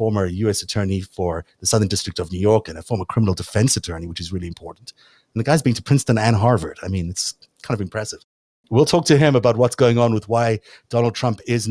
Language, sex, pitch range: English, male, 100-125 Hz